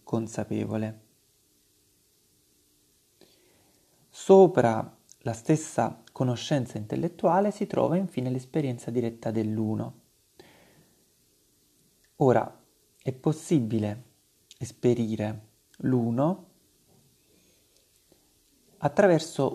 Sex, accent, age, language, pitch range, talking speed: male, native, 30-49, Italian, 115-160 Hz, 55 wpm